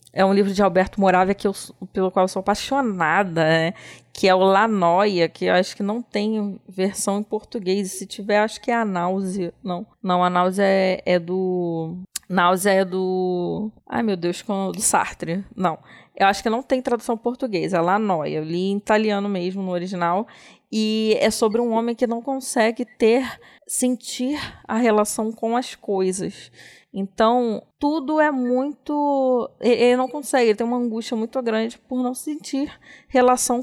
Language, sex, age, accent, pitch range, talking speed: Portuguese, female, 20-39, Brazilian, 185-230 Hz, 180 wpm